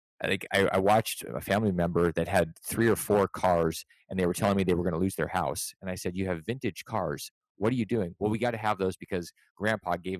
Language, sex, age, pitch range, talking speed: English, male, 30-49, 90-105 Hz, 265 wpm